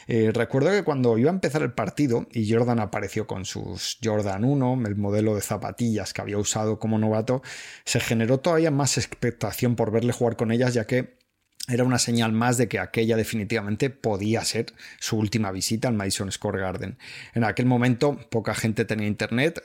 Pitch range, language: 110-125 Hz, Spanish